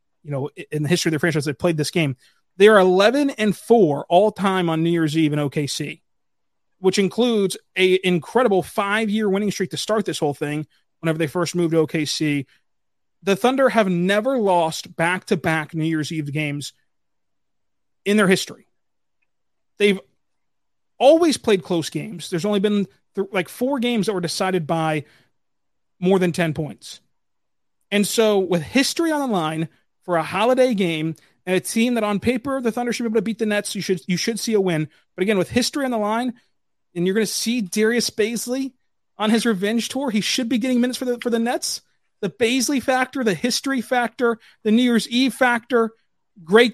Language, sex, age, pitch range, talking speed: English, male, 30-49, 170-230 Hz, 190 wpm